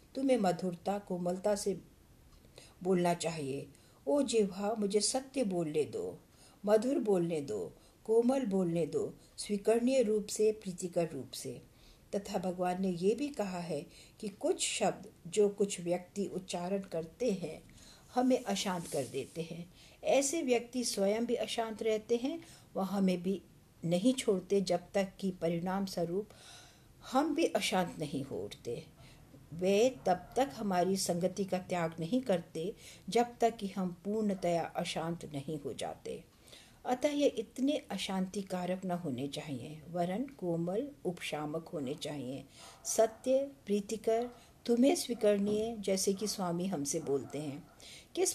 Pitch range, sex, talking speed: 175-225 Hz, female, 135 wpm